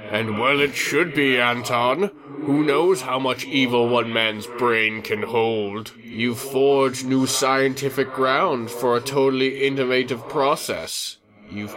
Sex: male